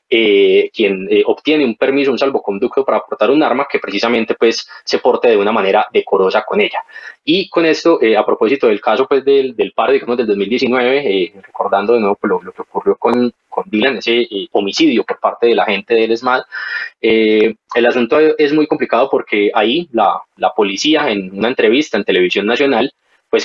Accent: Colombian